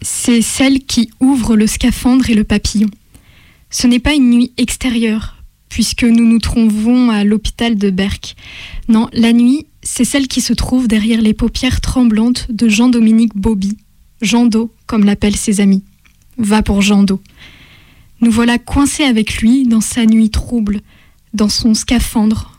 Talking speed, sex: 160 wpm, female